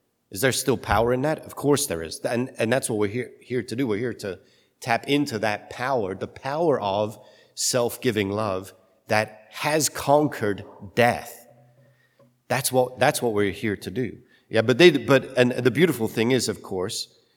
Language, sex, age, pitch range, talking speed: English, male, 40-59, 95-125 Hz, 185 wpm